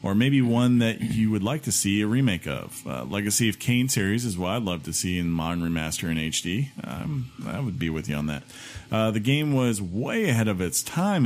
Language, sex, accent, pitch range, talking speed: English, male, American, 95-125 Hz, 240 wpm